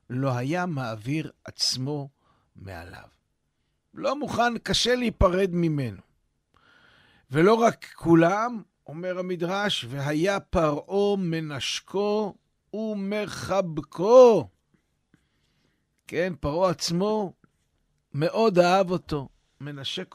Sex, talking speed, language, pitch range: male, 75 wpm, Hebrew, 120-190 Hz